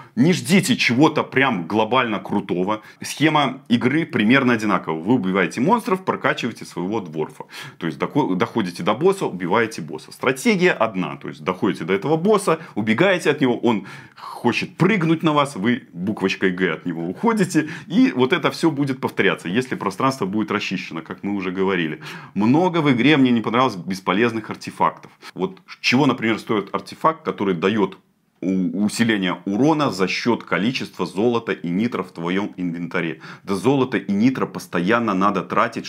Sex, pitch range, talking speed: male, 90-150 Hz, 155 wpm